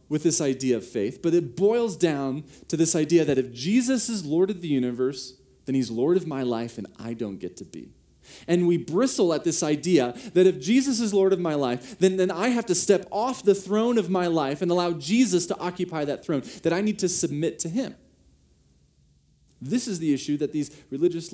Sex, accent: male, American